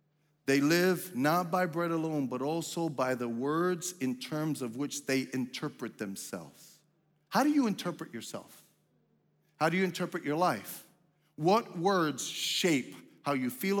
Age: 40-59